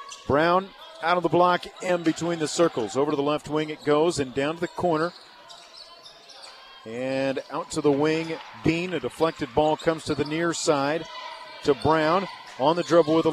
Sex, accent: male, American